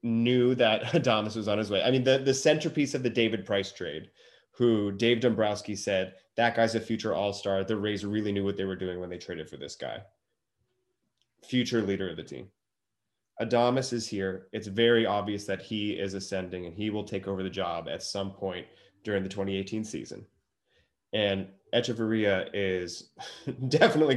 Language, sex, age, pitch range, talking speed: English, male, 20-39, 95-120 Hz, 180 wpm